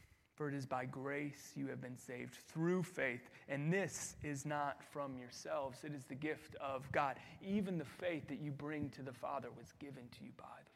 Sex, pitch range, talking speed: male, 140-185 Hz, 210 wpm